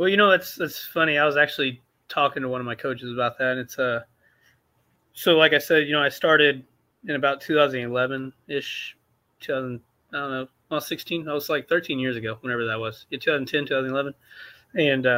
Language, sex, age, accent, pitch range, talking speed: English, male, 20-39, American, 125-140 Hz, 200 wpm